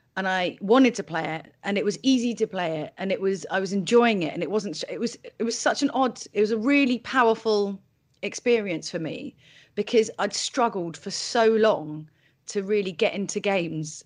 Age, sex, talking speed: 30-49, female, 210 wpm